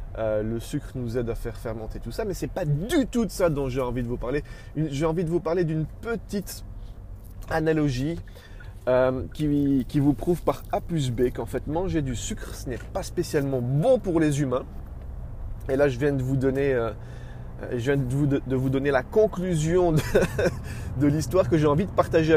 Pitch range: 110-155 Hz